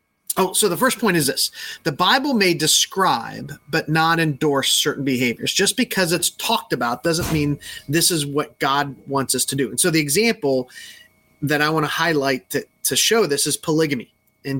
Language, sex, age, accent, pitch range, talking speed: English, male, 30-49, American, 145-185 Hz, 195 wpm